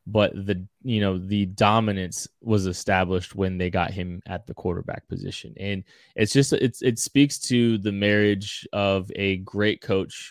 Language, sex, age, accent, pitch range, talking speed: English, male, 20-39, American, 95-105 Hz, 170 wpm